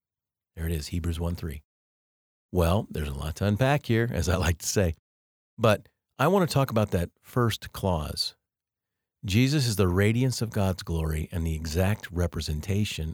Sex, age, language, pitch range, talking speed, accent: male, 50-69, English, 85-110 Hz, 170 wpm, American